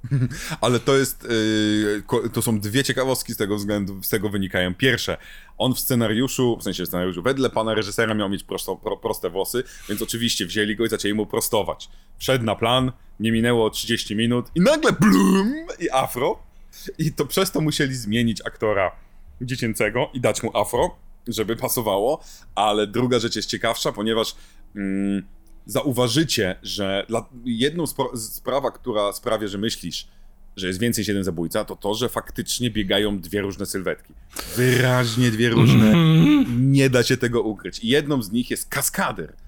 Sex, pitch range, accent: male, 100-130 Hz, native